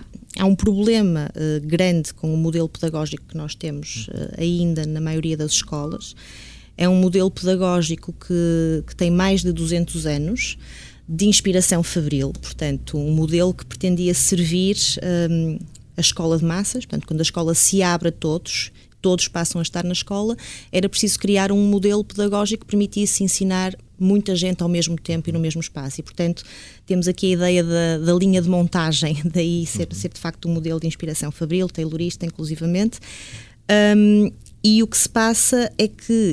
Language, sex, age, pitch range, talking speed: English, female, 20-39, 165-195 Hz, 170 wpm